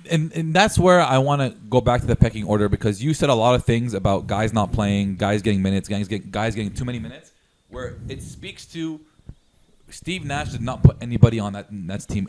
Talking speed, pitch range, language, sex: 235 wpm, 105-135 Hz, English, male